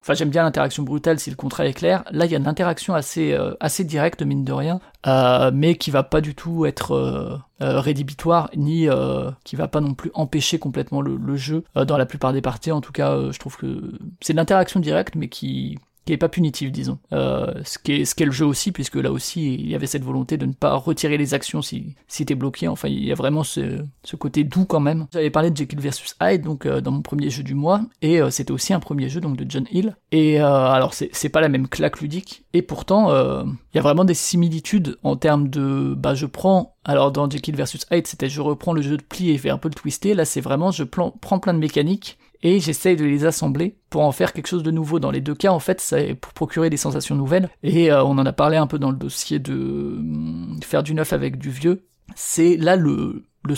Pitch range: 140-170 Hz